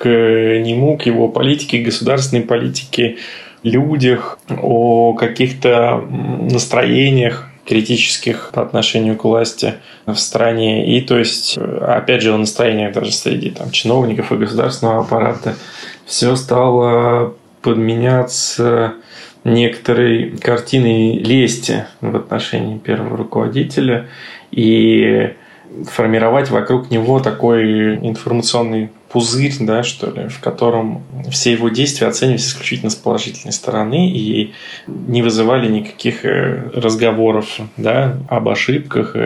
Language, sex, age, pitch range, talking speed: Russian, male, 20-39, 115-125 Hz, 105 wpm